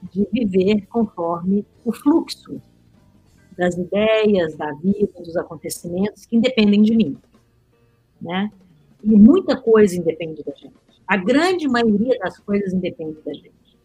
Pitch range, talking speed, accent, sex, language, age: 180-225 Hz, 130 wpm, Brazilian, female, Portuguese, 50-69